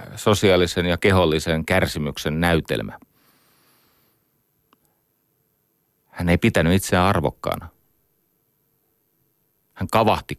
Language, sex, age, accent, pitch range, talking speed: Finnish, male, 30-49, native, 80-105 Hz, 70 wpm